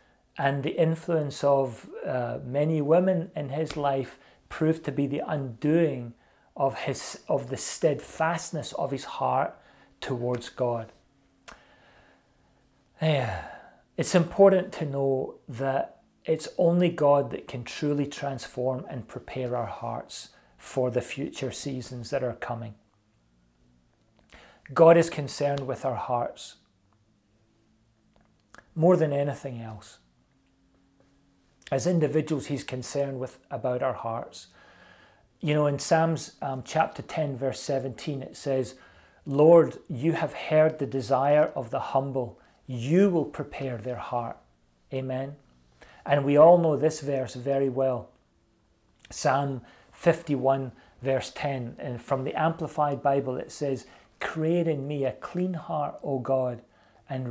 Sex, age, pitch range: male, 40-59, 125-150 Hz